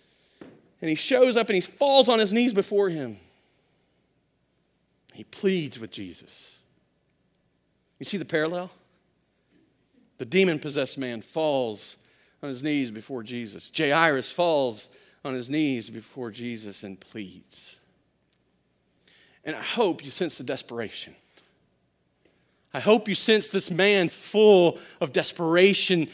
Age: 40-59